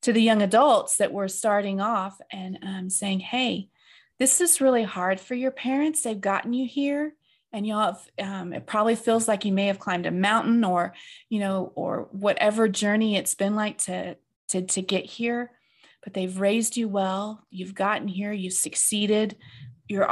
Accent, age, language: American, 30-49, English